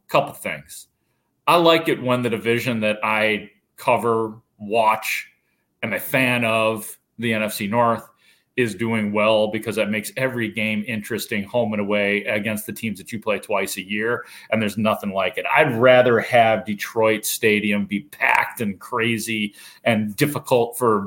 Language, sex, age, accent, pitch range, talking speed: English, male, 40-59, American, 110-165 Hz, 160 wpm